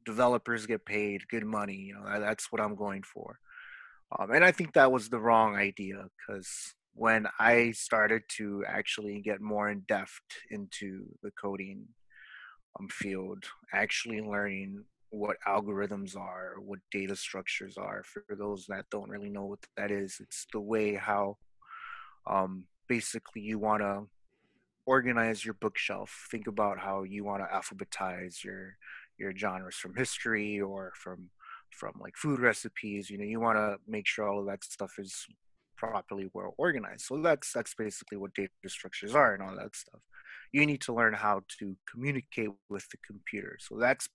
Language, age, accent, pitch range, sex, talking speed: English, 20-39, American, 100-115 Hz, male, 165 wpm